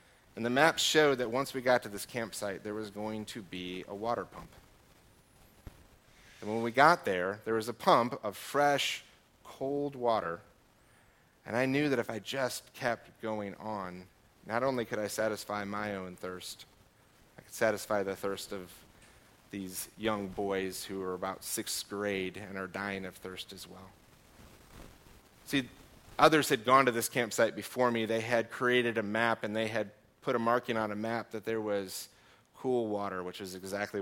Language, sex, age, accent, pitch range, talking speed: English, male, 30-49, American, 100-120 Hz, 180 wpm